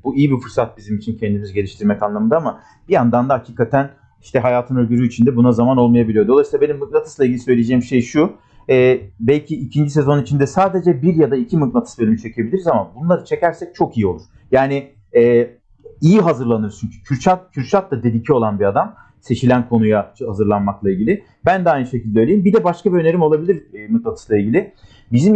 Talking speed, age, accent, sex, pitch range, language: 180 wpm, 40-59, native, male, 120-160 Hz, Turkish